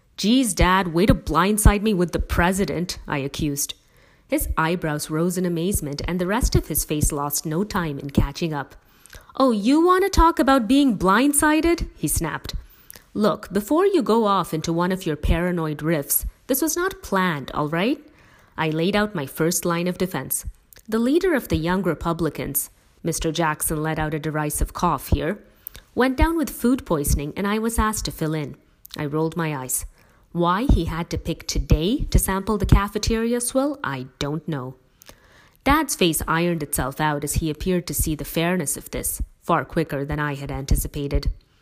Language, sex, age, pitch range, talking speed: English, female, 30-49, 150-210 Hz, 185 wpm